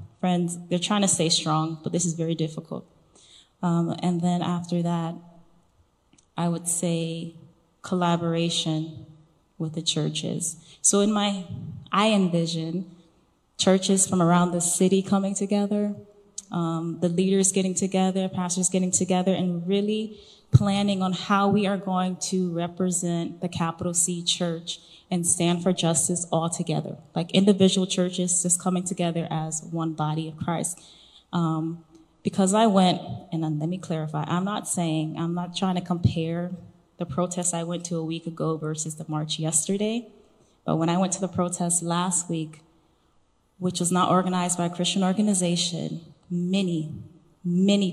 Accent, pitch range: American, 165-185 Hz